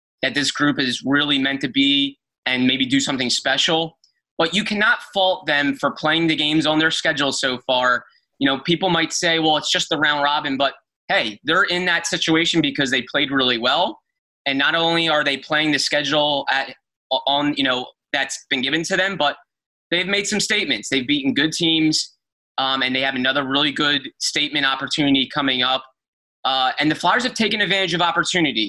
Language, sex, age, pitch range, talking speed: English, male, 20-39, 140-175 Hz, 200 wpm